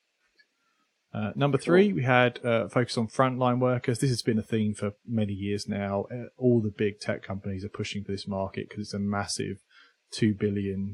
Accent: British